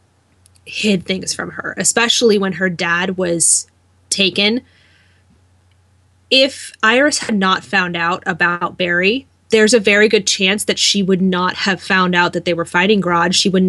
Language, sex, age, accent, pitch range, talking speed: English, female, 20-39, American, 180-230 Hz, 160 wpm